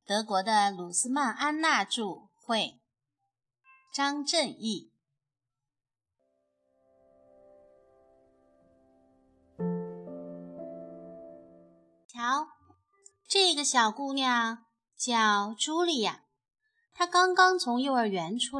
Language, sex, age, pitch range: Chinese, female, 30-49, 180-290 Hz